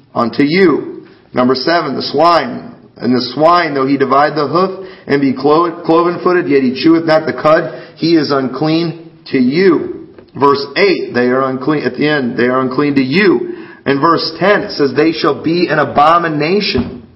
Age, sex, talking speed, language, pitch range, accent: 40-59, male, 180 wpm, English, 135-175 Hz, American